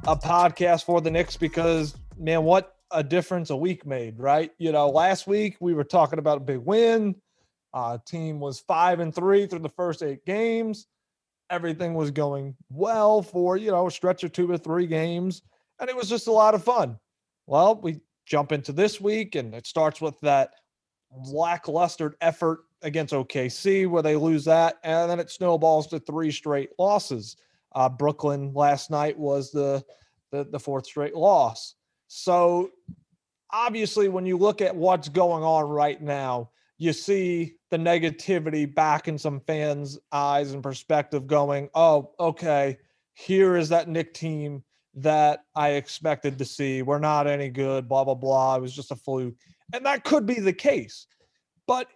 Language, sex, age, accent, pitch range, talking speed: English, male, 30-49, American, 145-180 Hz, 175 wpm